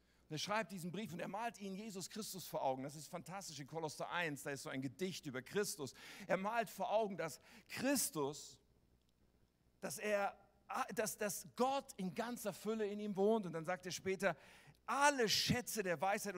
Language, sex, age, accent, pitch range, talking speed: German, male, 50-69, German, 140-200 Hz, 185 wpm